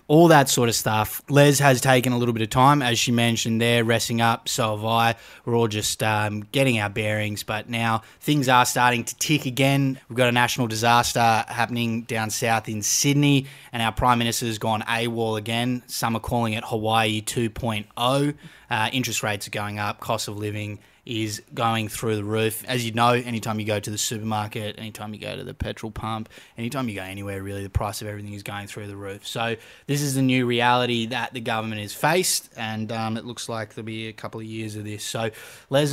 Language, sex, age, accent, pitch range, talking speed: English, male, 20-39, Australian, 110-125 Hz, 220 wpm